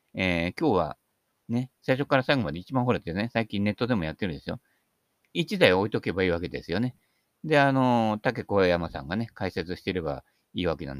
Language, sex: Japanese, male